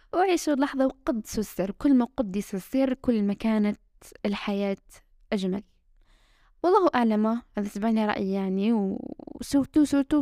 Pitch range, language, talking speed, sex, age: 200-250 Hz, Arabic, 130 wpm, female, 10-29